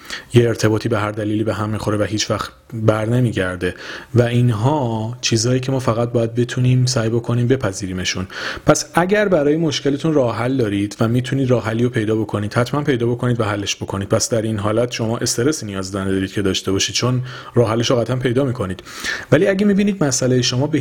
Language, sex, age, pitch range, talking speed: Persian, male, 30-49, 105-135 Hz, 185 wpm